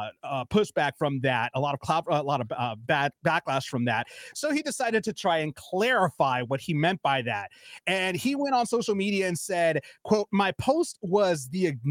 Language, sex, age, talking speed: English, male, 30-49, 195 wpm